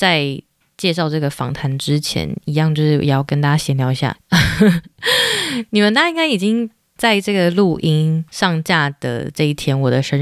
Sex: female